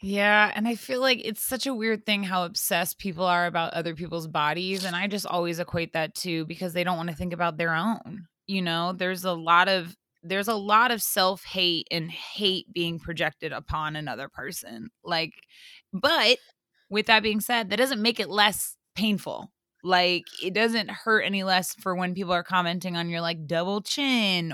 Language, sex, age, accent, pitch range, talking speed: English, female, 20-39, American, 175-230 Hz, 195 wpm